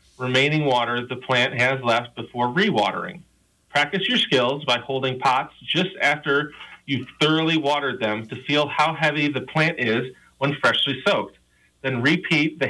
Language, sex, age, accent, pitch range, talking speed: English, male, 30-49, American, 120-155 Hz, 155 wpm